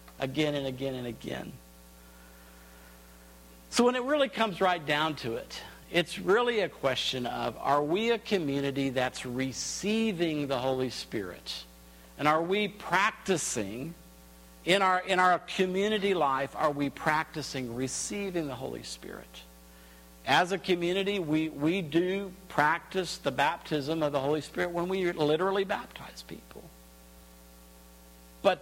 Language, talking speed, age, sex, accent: English, 135 wpm, 50-69, male, American